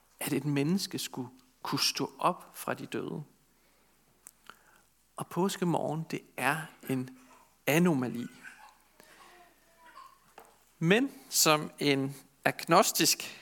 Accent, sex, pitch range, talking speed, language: native, male, 140-200 Hz, 90 wpm, Danish